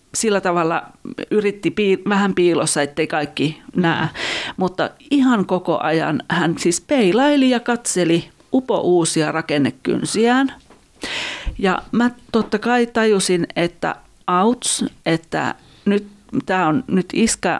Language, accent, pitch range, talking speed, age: Finnish, native, 165-220 Hz, 115 wpm, 40-59